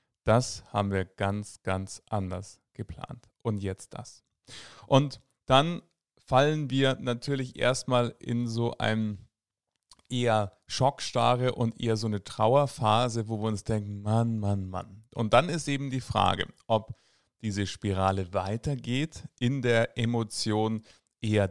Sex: male